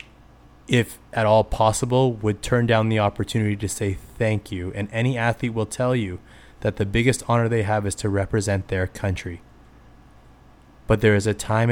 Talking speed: 180 wpm